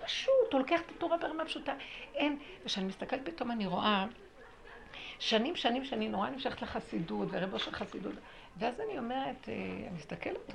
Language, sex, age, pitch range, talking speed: Hebrew, female, 60-79, 190-255 Hz, 155 wpm